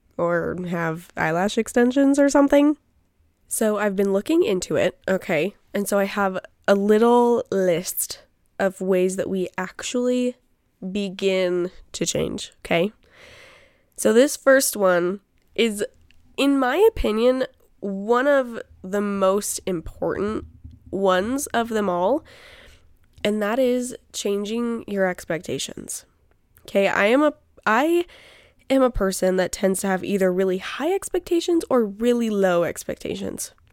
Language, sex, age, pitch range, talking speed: English, female, 10-29, 185-255 Hz, 130 wpm